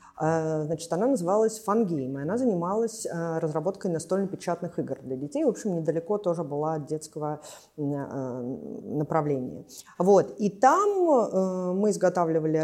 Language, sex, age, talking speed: Russian, female, 30-49, 115 wpm